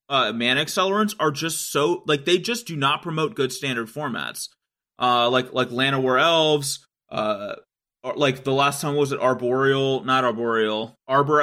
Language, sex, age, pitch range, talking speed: English, male, 30-49, 130-165 Hz, 175 wpm